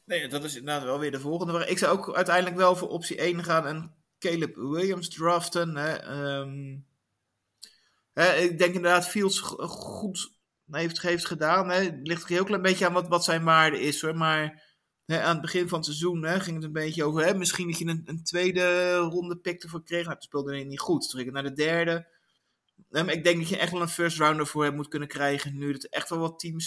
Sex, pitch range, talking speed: male, 150-175 Hz, 210 wpm